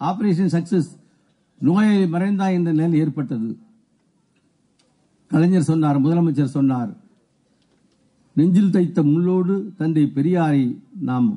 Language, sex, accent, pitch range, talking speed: Tamil, male, native, 140-185 Hz, 85 wpm